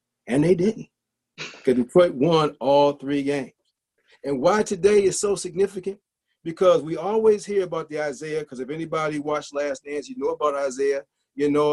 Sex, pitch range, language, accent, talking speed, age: male, 140-190 Hz, English, American, 175 wpm, 40-59